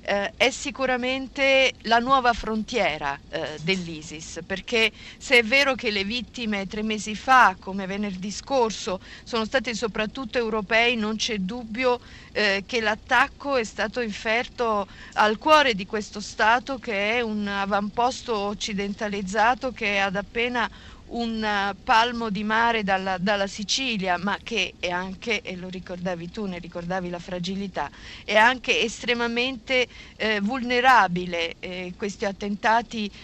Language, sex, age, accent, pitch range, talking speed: Italian, female, 50-69, native, 200-240 Hz, 130 wpm